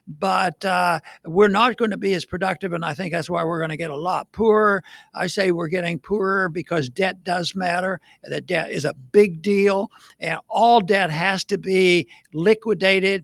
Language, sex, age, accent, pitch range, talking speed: English, male, 60-79, American, 180-215 Hz, 195 wpm